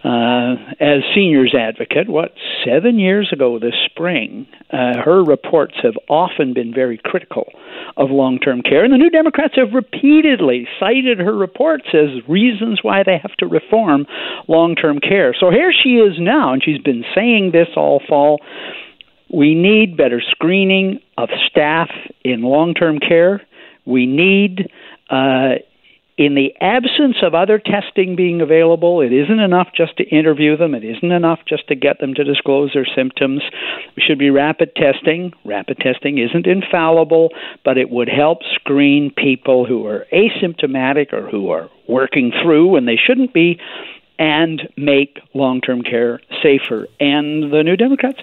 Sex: male